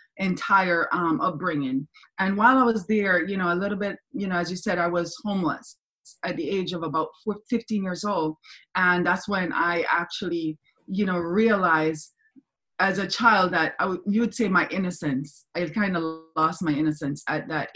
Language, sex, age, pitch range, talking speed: English, female, 20-39, 165-205 Hz, 195 wpm